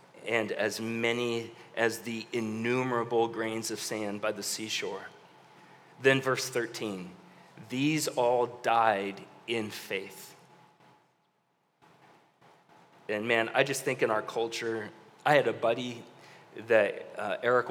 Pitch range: 110-120 Hz